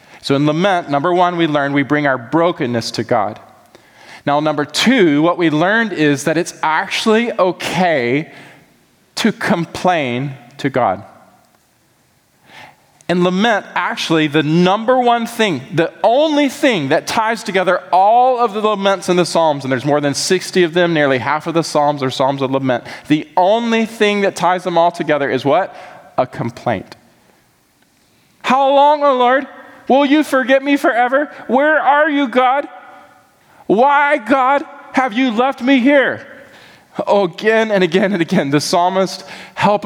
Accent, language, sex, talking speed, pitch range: American, English, male, 160 wpm, 145-230 Hz